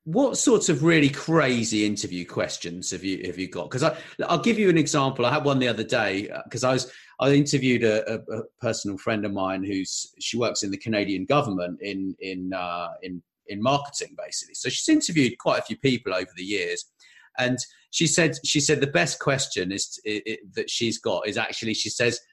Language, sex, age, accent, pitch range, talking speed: English, male, 40-59, British, 110-150 Hz, 215 wpm